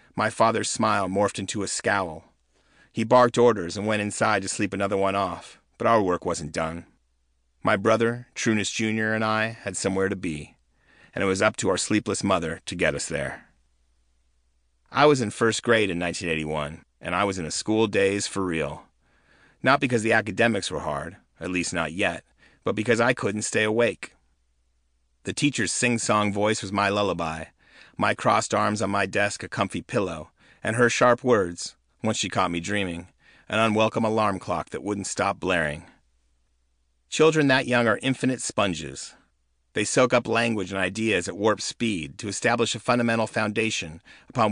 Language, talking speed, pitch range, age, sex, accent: English, 175 wpm, 85-110 Hz, 40-59, male, American